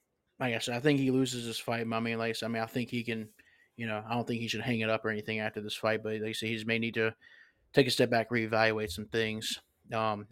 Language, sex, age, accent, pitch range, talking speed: English, male, 20-39, American, 110-125 Hz, 280 wpm